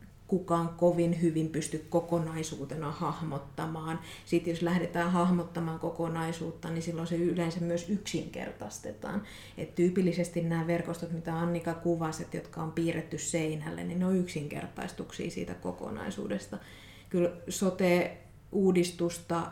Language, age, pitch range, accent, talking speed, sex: Finnish, 30-49, 155-175 Hz, native, 110 wpm, female